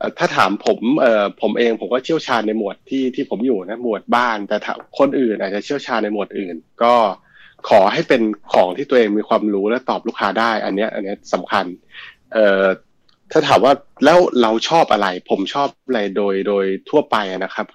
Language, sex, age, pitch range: Thai, male, 20-39, 100-125 Hz